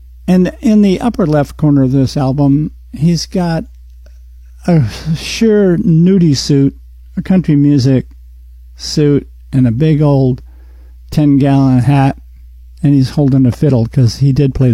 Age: 50-69